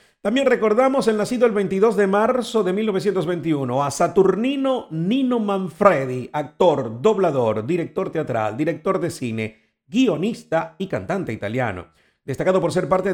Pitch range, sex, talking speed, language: 130-190 Hz, male, 135 wpm, Spanish